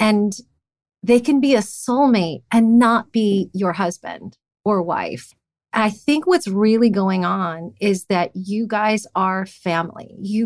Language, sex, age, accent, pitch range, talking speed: English, female, 30-49, American, 180-225 Hz, 150 wpm